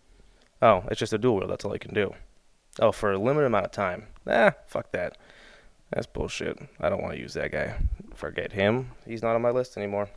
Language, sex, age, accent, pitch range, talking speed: English, male, 20-39, American, 95-110 Hz, 225 wpm